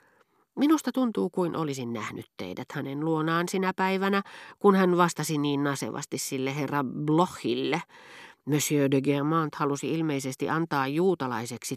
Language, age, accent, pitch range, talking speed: Finnish, 40-59, native, 135-180 Hz, 125 wpm